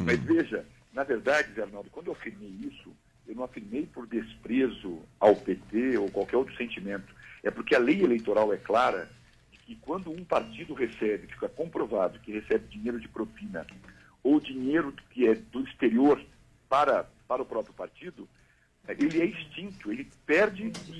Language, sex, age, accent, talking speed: English, male, 60-79, Brazilian, 160 wpm